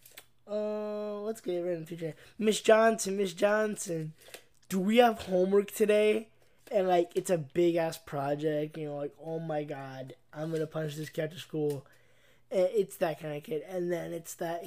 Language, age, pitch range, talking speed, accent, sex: English, 20-39, 150-190 Hz, 195 wpm, American, male